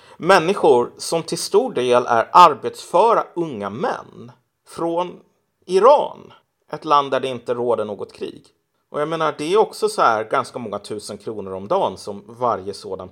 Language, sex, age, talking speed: Swedish, male, 30-49, 165 wpm